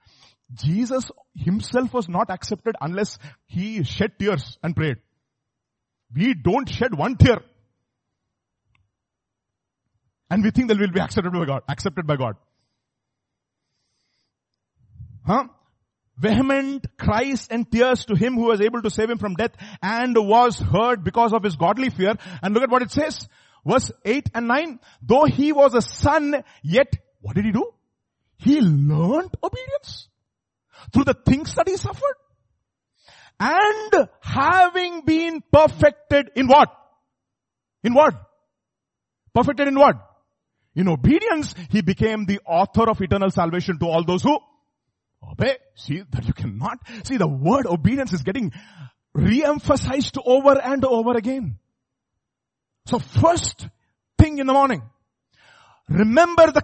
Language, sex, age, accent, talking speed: English, male, 40-59, Indian, 135 wpm